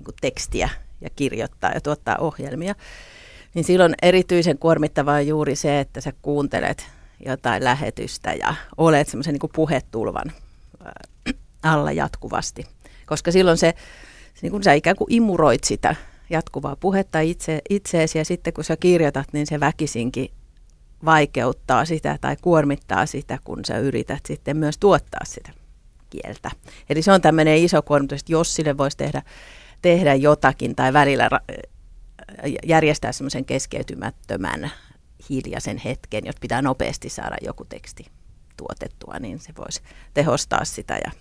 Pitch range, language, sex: 135-165 Hz, Finnish, female